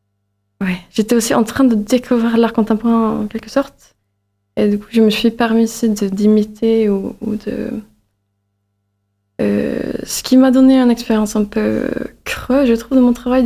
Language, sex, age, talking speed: French, female, 20-39, 175 wpm